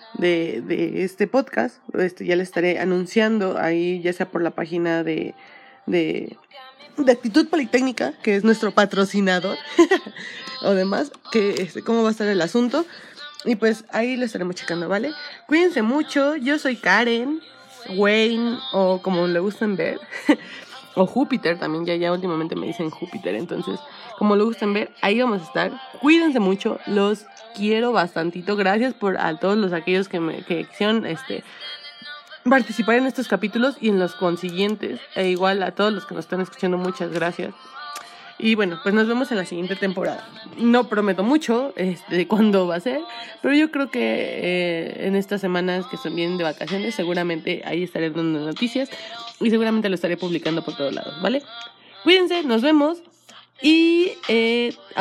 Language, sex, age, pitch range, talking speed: Spanish, female, 20-39, 180-250 Hz, 170 wpm